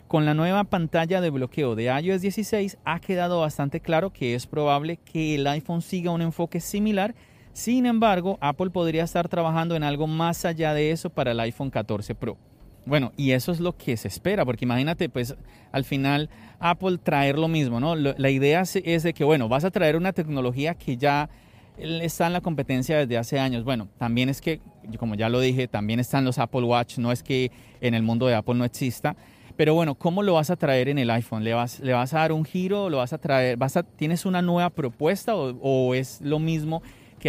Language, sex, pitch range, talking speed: Spanish, male, 125-170 Hz, 215 wpm